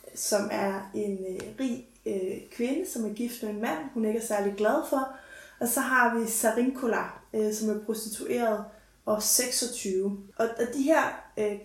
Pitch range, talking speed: 210-245 Hz, 180 wpm